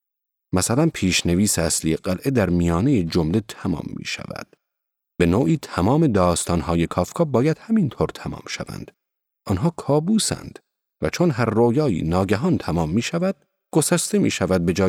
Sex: male